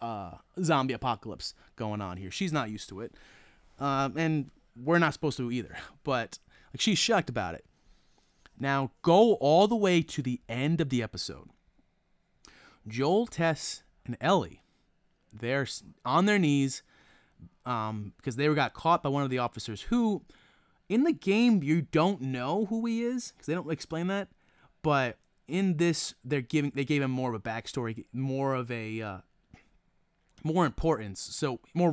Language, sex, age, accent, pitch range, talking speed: English, male, 30-49, American, 110-150 Hz, 160 wpm